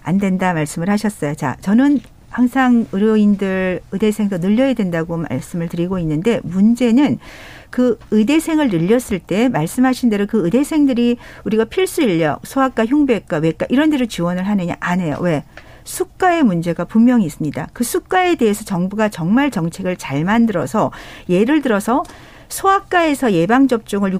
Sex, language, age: female, Korean, 50-69